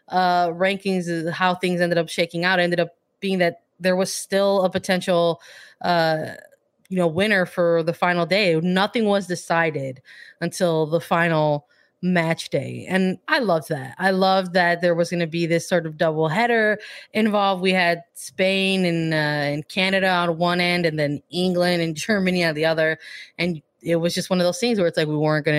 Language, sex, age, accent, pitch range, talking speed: English, female, 20-39, American, 170-205 Hz, 190 wpm